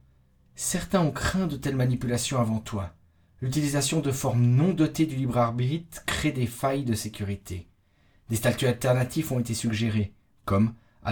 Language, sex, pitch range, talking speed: French, male, 100-135 Hz, 150 wpm